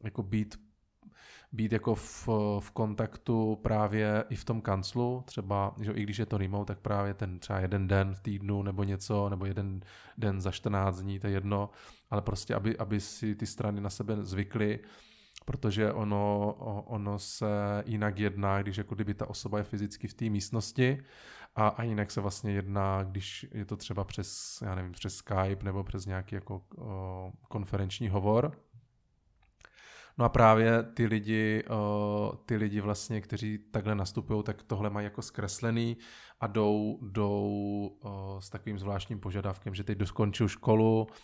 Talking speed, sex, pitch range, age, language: 155 wpm, male, 100-110 Hz, 20-39, Czech